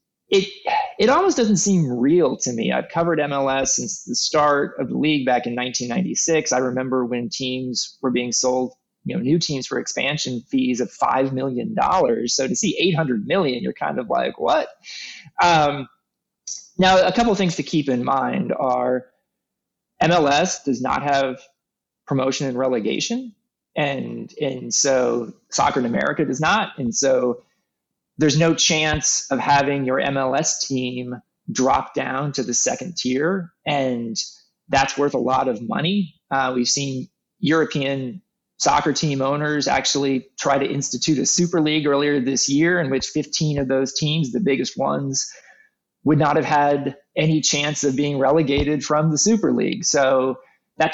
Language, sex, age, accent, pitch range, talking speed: English, male, 20-39, American, 130-155 Hz, 160 wpm